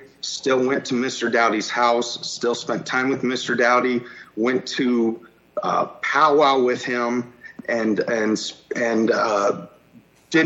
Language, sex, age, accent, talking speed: English, male, 40-59, American, 130 wpm